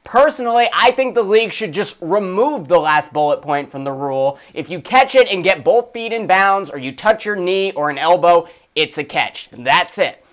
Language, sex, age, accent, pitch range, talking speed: English, male, 20-39, American, 170-235 Hz, 220 wpm